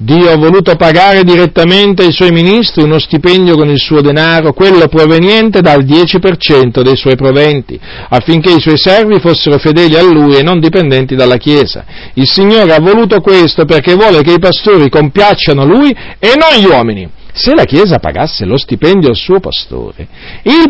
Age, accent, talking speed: 50-69, native, 175 wpm